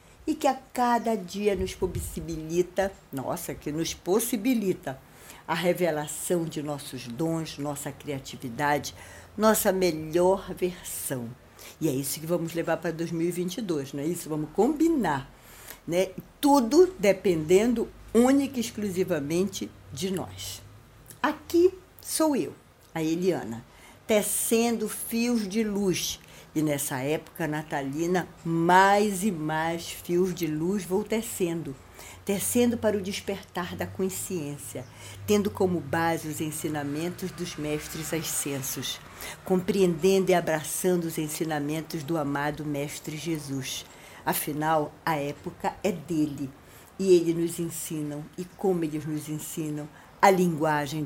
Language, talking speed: Portuguese, 120 wpm